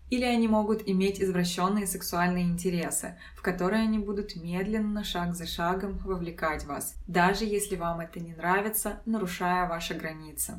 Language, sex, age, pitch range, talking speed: Russian, female, 20-39, 175-210 Hz, 145 wpm